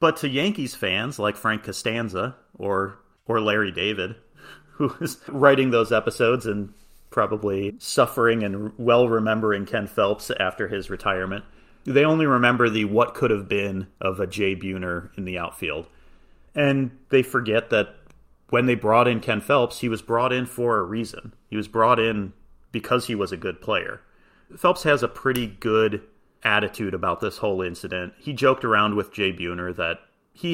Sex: male